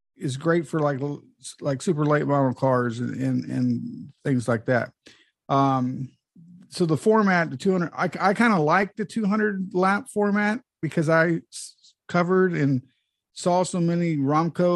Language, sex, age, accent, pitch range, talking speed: English, male, 50-69, American, 130-165 Hz, 165 wpm